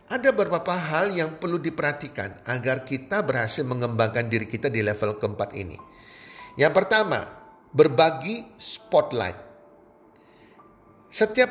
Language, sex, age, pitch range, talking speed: Indonesian, male, 50-69, 140-200 Hz, 110 wpm